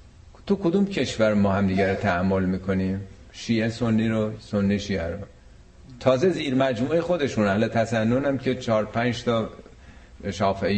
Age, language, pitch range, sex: 50-69, Persian, 100-130 Hz, male